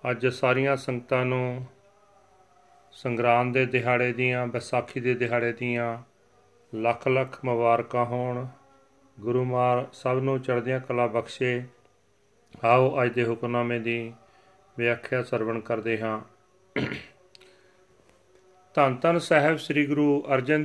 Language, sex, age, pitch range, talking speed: Punjabi, male, 40-59, 125-150 Hz, 110 wpm